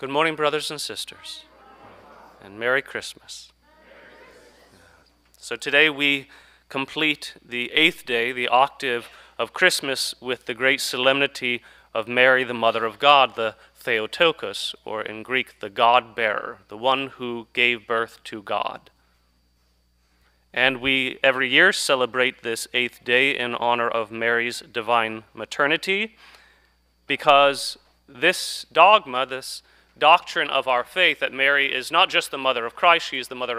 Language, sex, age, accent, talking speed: English, male, 30-49, American, 140 wpm